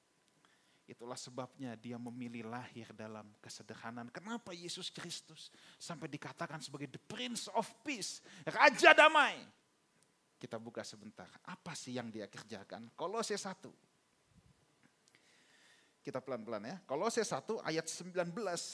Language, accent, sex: Indonesian, native, male